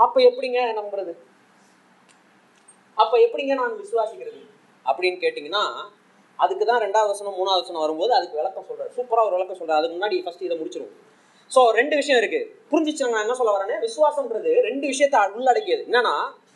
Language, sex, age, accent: Tamil, male, 30-49, native